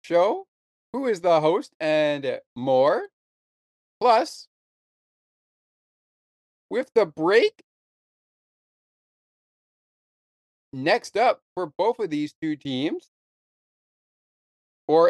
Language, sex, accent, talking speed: English, male, American, 80 wpm